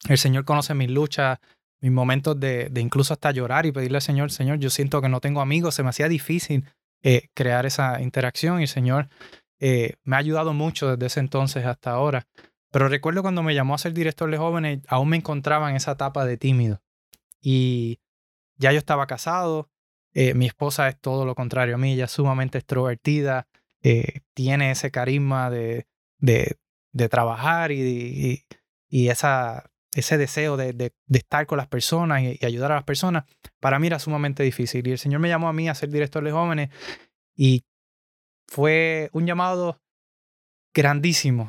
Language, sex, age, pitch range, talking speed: Spanish, male, 20-39, 130-150 Hz, 185 wpm